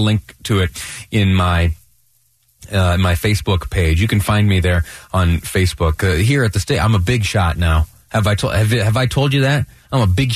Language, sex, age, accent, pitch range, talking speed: English, male, 30-49, American, 90-115 Hz, 225 wpm